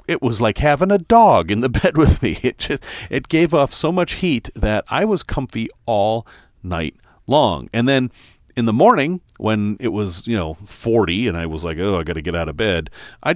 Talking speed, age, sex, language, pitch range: 225 wpm, 40-59, male, English, 90-130 Hz